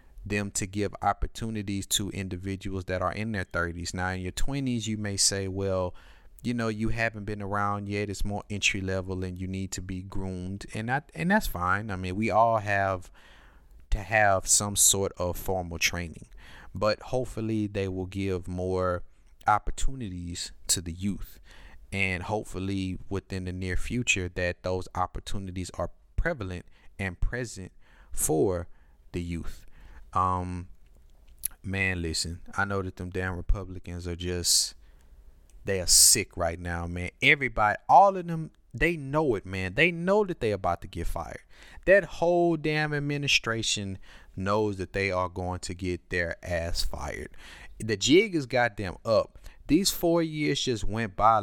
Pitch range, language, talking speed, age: 90-110 Hz, English, 160 wpm, 30-49